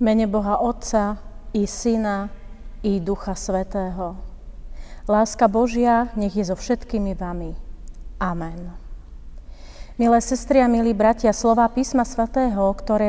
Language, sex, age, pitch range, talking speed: Slovak, female, 40-59, 195-235 Hz, 115 wpm